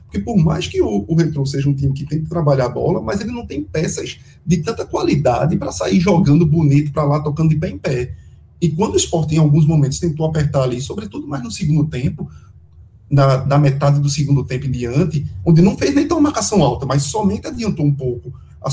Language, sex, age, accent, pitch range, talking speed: Portuguese, male, 20-39, Brazilian, 130-165 Hz, 230 wpm